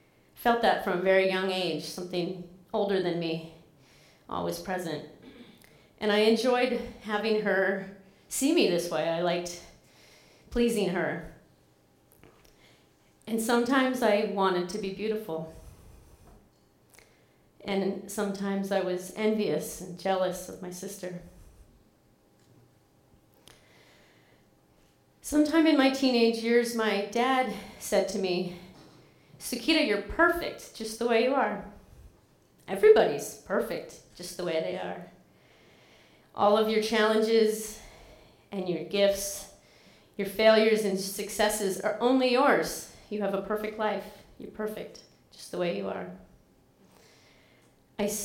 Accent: American